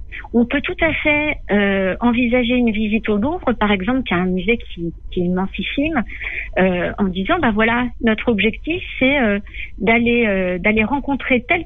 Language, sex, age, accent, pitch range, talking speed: French, female, 50-69, French, 185-235 Hz, 185 wpm